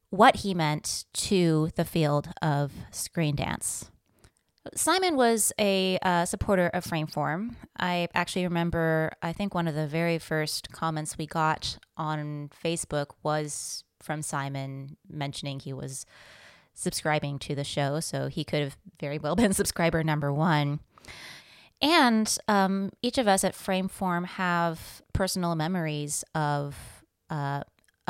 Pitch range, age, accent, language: 155-190 Hz, 20-39, American, English